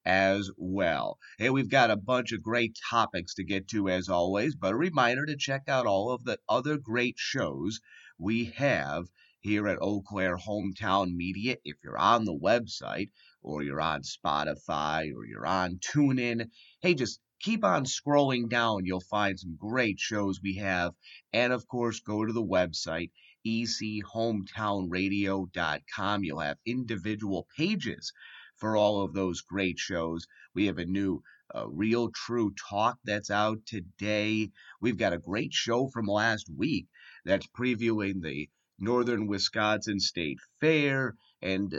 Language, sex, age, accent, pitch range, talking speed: English, male, 30-49, American, 95-115 Hz, 155 wpm